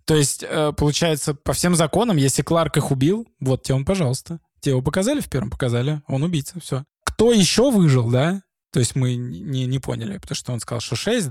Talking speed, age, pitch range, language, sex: 205 wpm, 20-39, 135-185 Hz, Russian, male